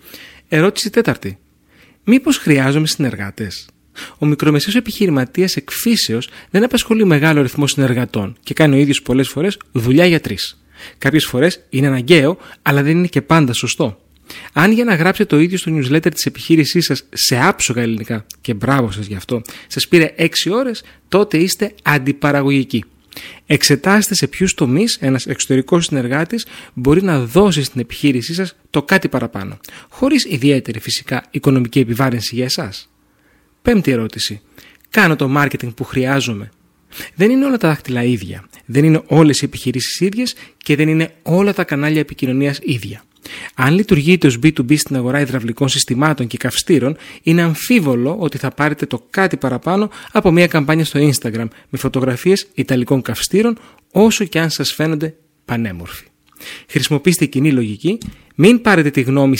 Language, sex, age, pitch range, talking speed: Greek, male, 30-49, 130-180 Hz, 150 wpm